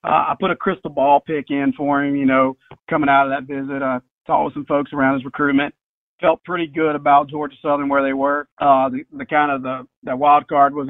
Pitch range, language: 140-150 Hz, English